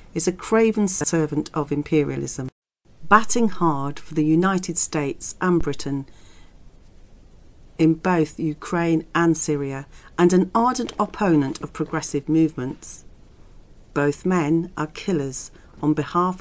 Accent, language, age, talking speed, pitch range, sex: British, English, 40-59, 115 wpm, 145-185 Hz, female